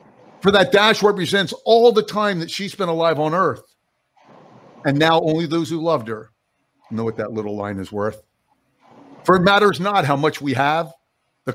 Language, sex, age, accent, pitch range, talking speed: English, male, 50-69, American, 130-180 Hz, 185 wpm